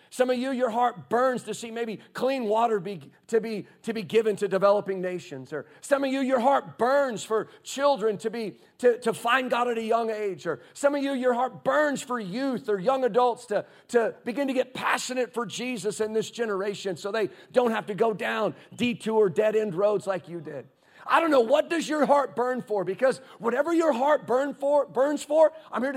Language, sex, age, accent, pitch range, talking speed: English, male, 40-59, American, 215-270 Hz, 215 wpm